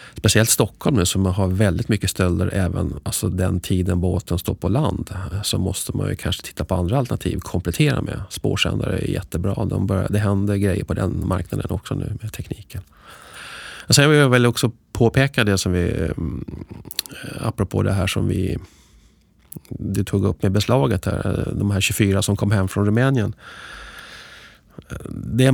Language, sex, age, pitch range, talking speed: Swedish, male, 30-49, 95-120 Hz, 170 wpm